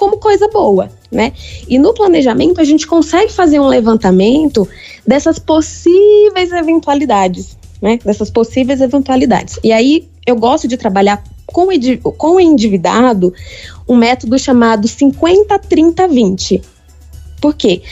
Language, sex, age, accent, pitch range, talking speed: Portuguese, female, 20-39, Brazilian, 210-315 Hz, 115 wpm